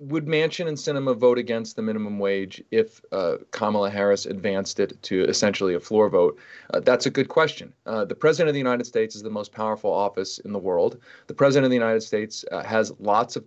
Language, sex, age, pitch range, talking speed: English, male, 40-59, 110-160 Hz, 225 wpm